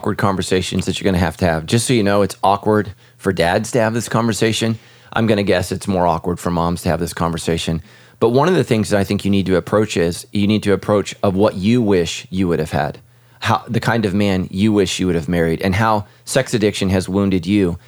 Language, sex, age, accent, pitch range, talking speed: English, male, 30-49, American, 95-115 Hz, 260 wpm